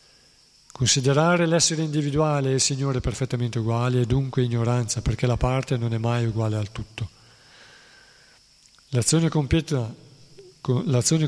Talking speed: 120 wpm